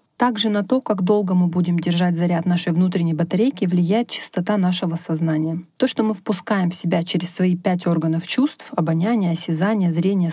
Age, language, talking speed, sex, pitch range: 20-39, Russian, 175 wpm, female, 170-205 Hz